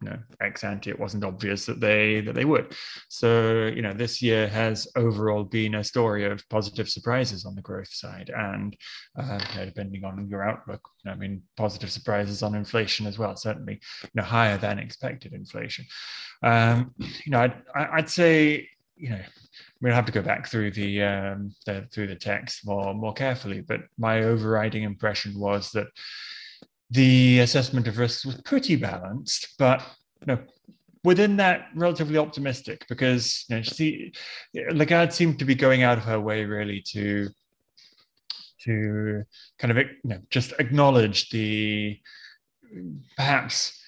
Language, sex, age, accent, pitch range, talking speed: English, male, 20-39, British, 105-125 Hz, 165 wpm